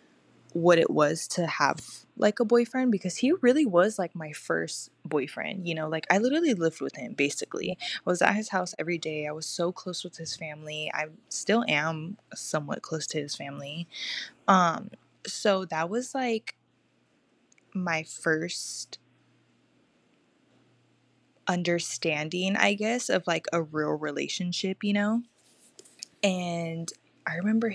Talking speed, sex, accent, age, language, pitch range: 145 wpm, female, American, 20-39, English, 160-200 Hz